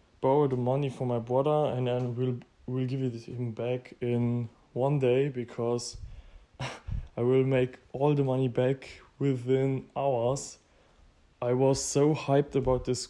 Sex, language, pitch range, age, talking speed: male, English, 120-140 Hz, 20-39, 155 wpm